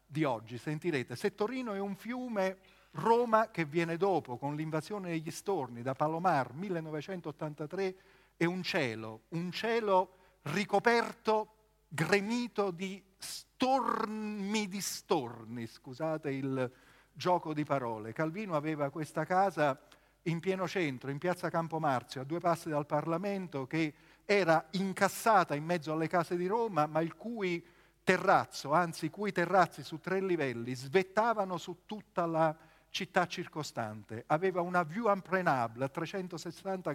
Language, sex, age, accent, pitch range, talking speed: Italian, male, 40-59, native, 150-195 Hz, 135 wpm